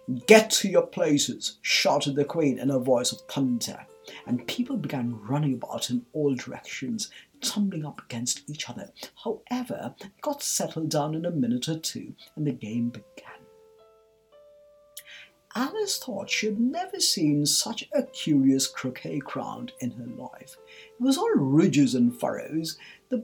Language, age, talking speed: English, 60-79, 155 wpm